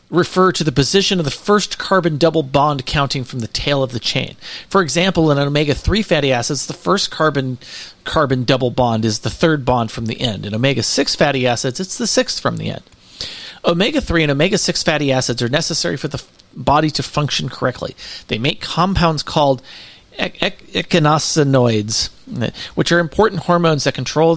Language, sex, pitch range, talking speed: English, male, 130-170 Hz, 180 wpm